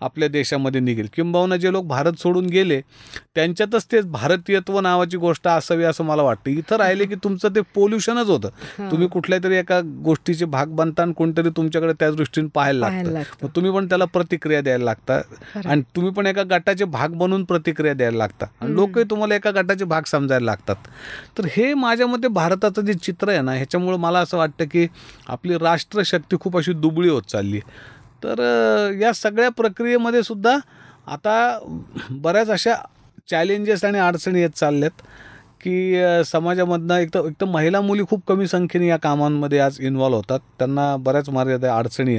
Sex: male